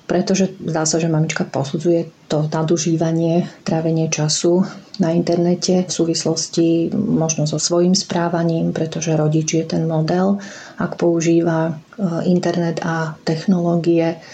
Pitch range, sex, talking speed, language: 160-175 Hz, female, 115 wpm, Slovak